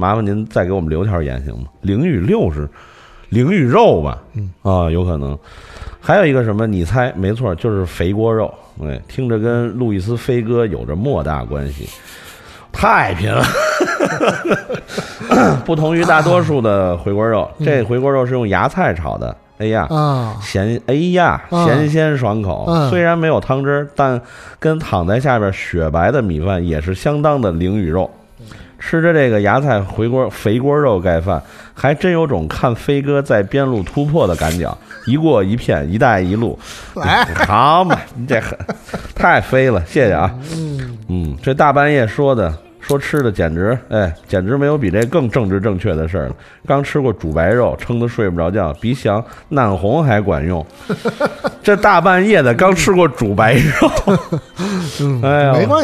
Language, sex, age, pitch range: Chinese, male, 30-49, 95-145 Hz